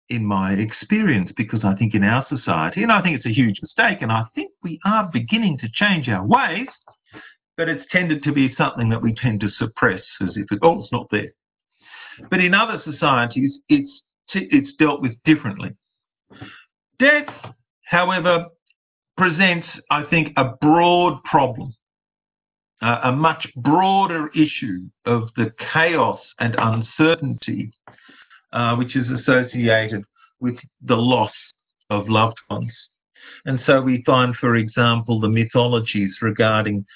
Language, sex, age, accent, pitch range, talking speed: English, male, 50-69, Australian, 110-150 Hz, 145 wpm